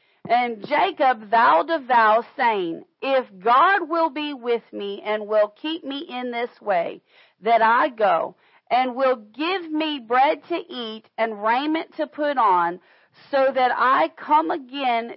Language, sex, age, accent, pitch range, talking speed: English, female, 40-59, American, 235-295 Hz, 155 wpm